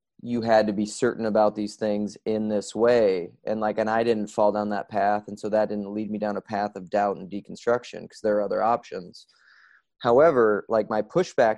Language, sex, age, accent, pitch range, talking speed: English, male, 20-39, American, 105-115 Hz, 220 wpm